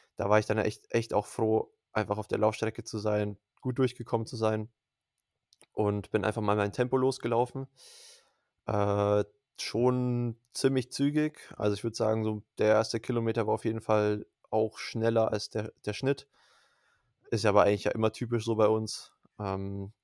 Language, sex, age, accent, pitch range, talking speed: German, male, 20-39, German, 105-120 Hz, 175 wpm